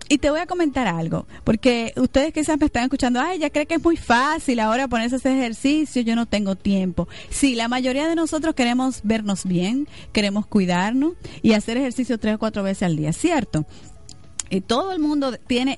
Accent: American